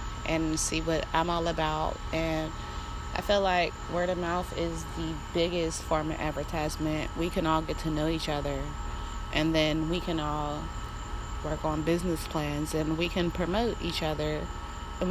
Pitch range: 155-180 Hz